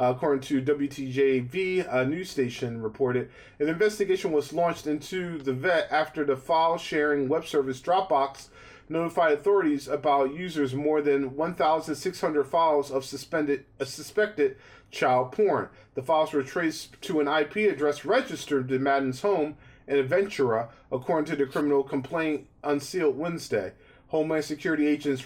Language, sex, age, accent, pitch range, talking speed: English, male, 40-59, American, 140-170 Hz, 135 wpm